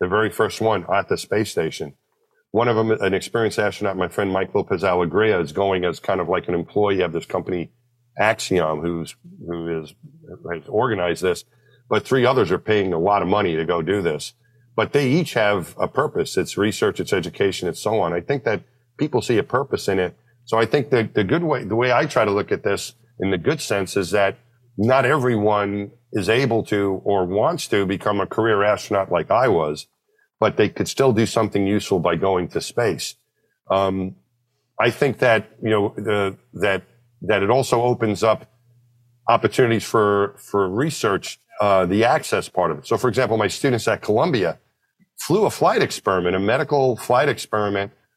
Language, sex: English, male